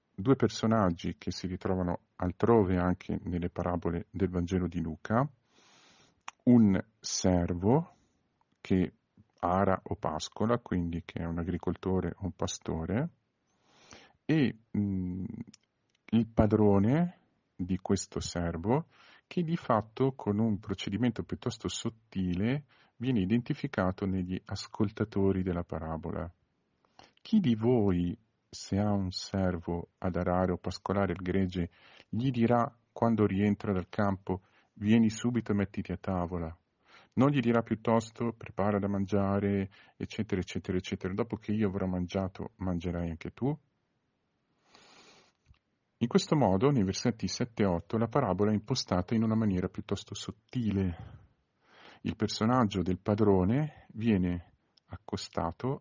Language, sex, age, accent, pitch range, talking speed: Italian, male, 50-69, native, 90-115 Hz, 120 wpm